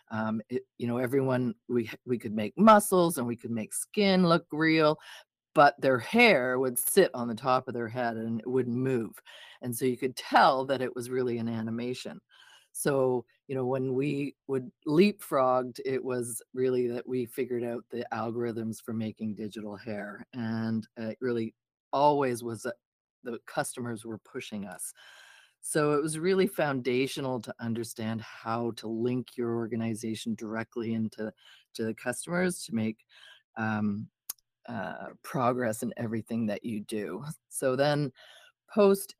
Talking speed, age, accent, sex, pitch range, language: 160 wpm, 40-59, American, female, 115-135 Hz, English